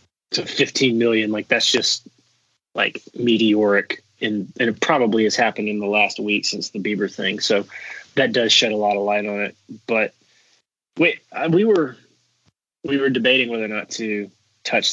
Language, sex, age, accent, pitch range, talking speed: English, male, 20-39, American, 105-120 Hz, 175 wpm